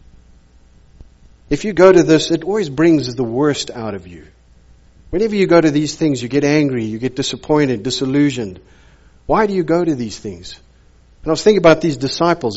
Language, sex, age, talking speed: English, male, 50-69, 190 wpm